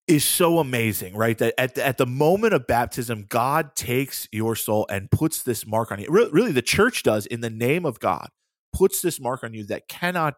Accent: American